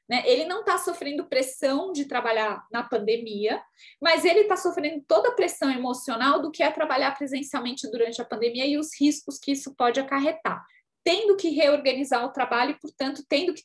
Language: Portuguese